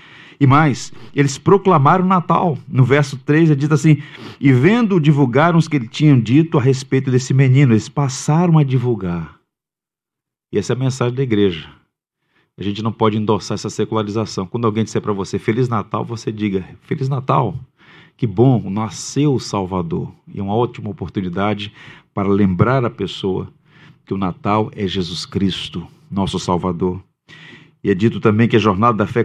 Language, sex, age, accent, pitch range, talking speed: Portuguese, male, 40-59, Brazilian, 105-140 Hz, 170 wpm